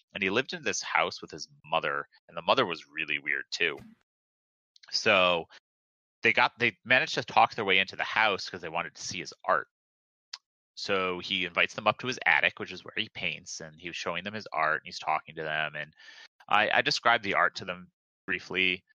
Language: English